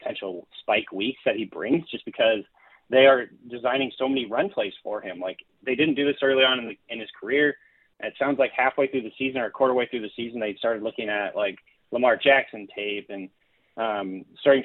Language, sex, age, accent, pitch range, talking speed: English, male, 30-49, American, 110-140 Hz, 215 wpm